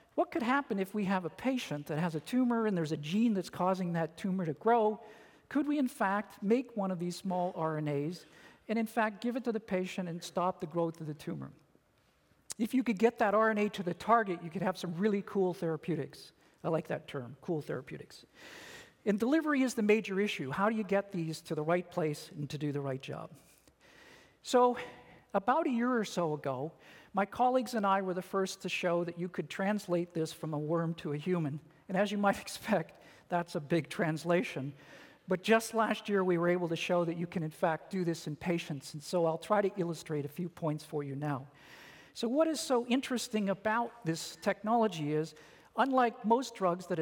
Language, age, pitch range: English, 50-69, 160-220 Hz